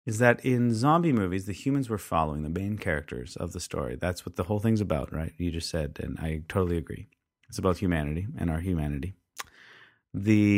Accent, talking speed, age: American, 205 wpm, 30-49